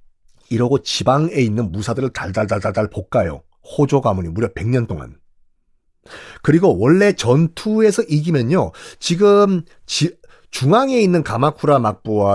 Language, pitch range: Korean, 115-185 Hz